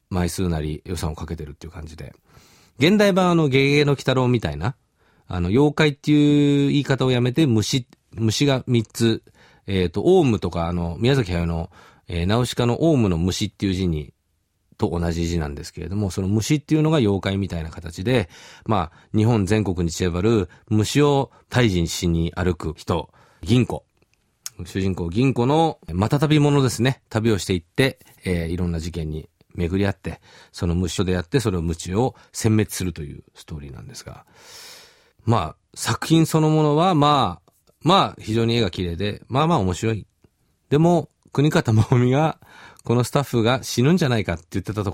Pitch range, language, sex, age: 90-140 Hz, Japanese, male, 40-59